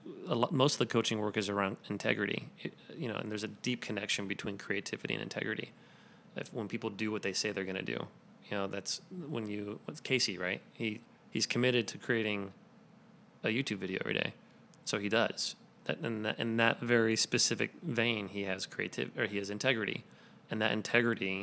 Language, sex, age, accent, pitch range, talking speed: English, male, 30-49, American, 100-115 Hz, 205 wpm